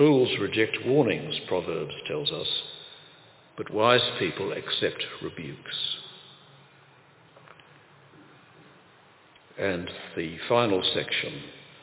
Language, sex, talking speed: English, male, 75 wpm